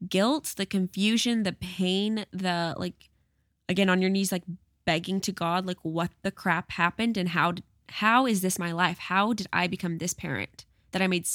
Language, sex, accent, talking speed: English, female, American, 190 wpm